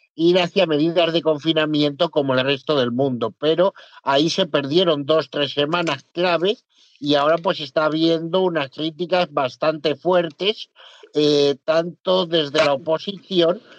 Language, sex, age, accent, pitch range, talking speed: Spanish, male, 50-69, Spanish, 150-175 Hz, 140 wpm